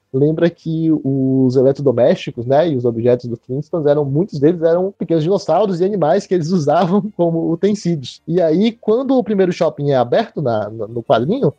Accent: Brazilian